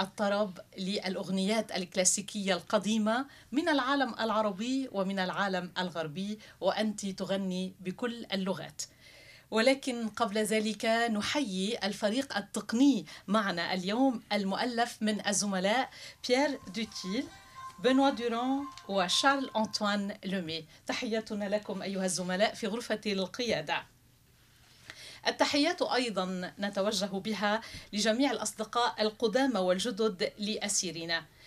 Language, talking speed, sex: Arabic, 90 wpm, female